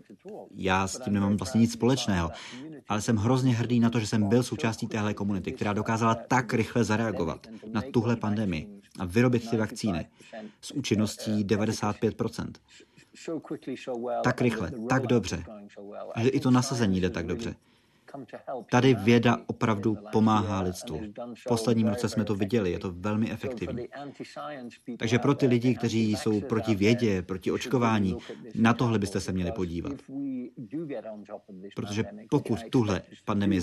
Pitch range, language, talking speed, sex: 100-120 Hz, Czech, 145 wpm, male